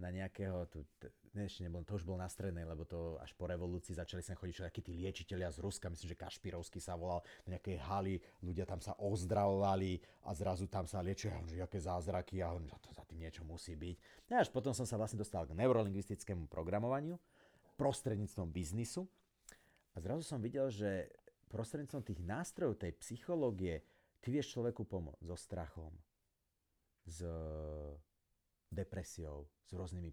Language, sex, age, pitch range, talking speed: Slovak, male, 30-49, 85-120 Hz, 165 wpm